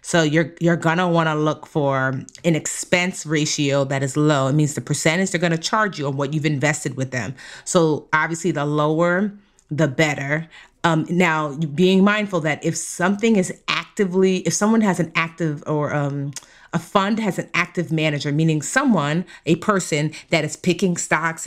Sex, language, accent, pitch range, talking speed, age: female, English, American, 150-185 Hz, 180 wpm, 30-49